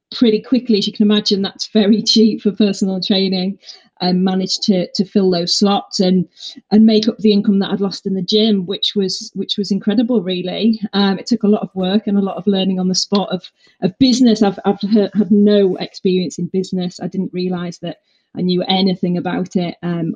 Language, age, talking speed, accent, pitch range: English, 30-49, 215 wpm, British, 195-230 Hz